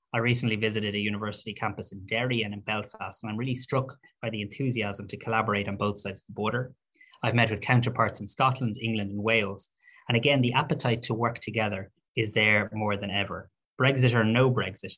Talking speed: 205 wpm